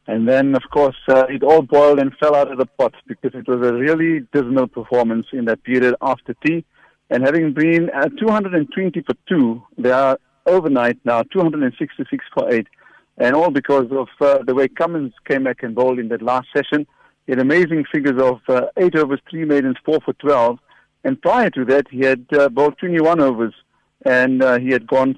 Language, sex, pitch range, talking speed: English, male, 125-150 Hz, 200 wpm